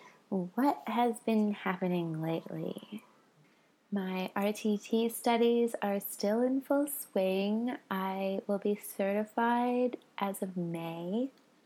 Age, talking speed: 20-39, 105 wpm